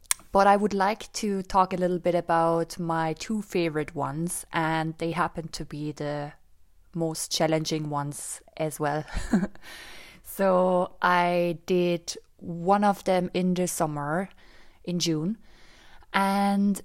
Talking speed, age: 130 wpm, 20-39